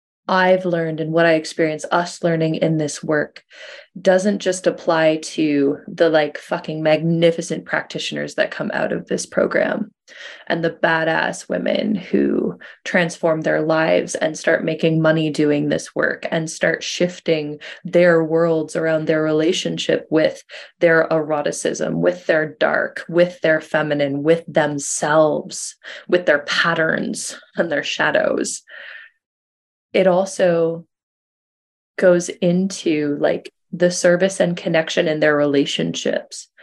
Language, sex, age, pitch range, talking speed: English, female, 20-39, 155-180 Hz, 130 wpm